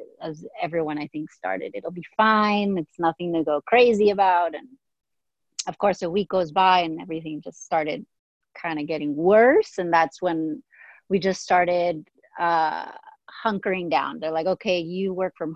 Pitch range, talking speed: 170-235 Hz, 170 wpm